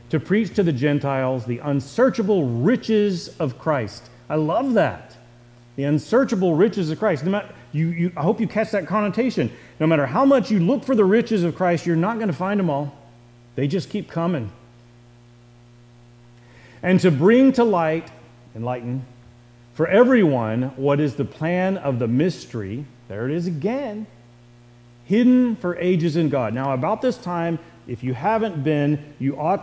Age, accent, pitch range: 40-59, American, 120-175 Hz